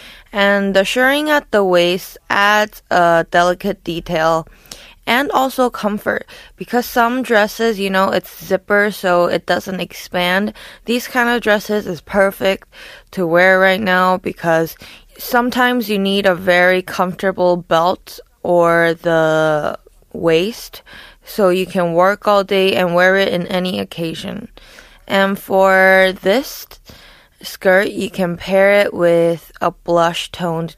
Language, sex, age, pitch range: Korean, female, 20-39, 175-205 Hz